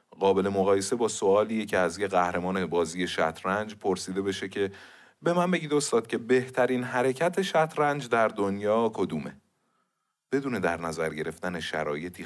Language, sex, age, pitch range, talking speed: Persian, male, 30-49, 85-110 Hz, 140 wpm